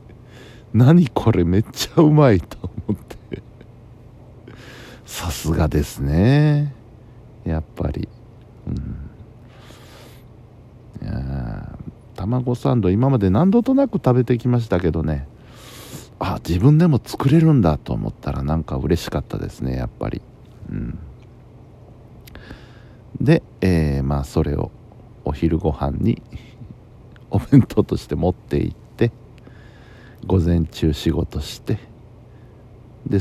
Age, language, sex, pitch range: 60-79, Japanese, male, 90-125 Hz